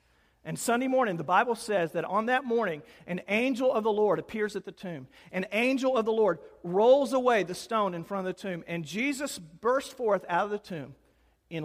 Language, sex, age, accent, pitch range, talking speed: English, male, 50-69, American, 140-205 Hz, 215 wpm